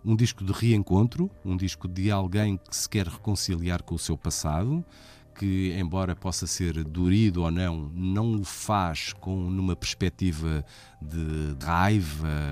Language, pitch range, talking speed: Portuguese, 80-105 Hz, 145 wpm